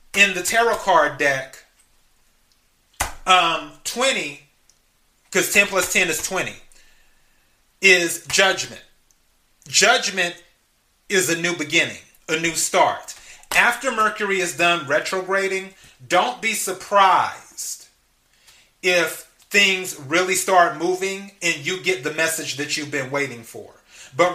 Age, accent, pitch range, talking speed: 30-49, American, 155-190 Hz, 115 wpm